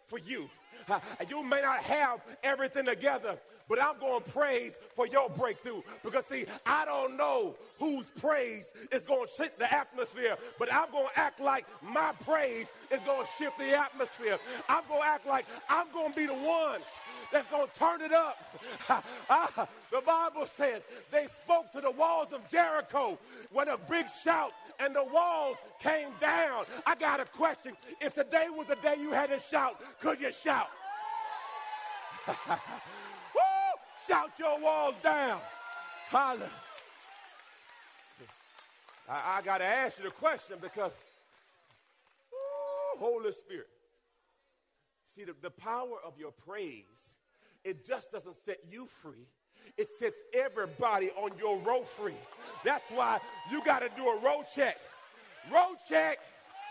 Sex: male